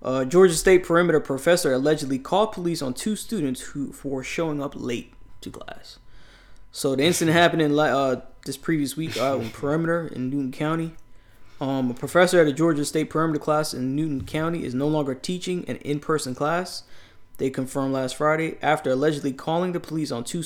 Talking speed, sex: 185 wpm, male